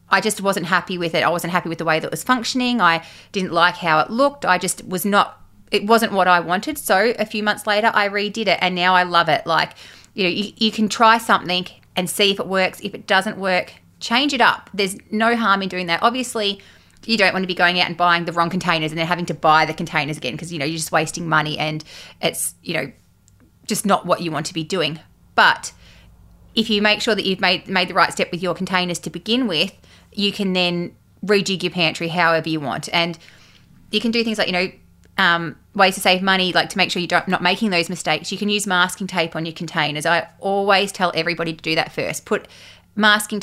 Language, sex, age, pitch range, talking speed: English, female, 20-39, 170-205 Hz, 245 wpm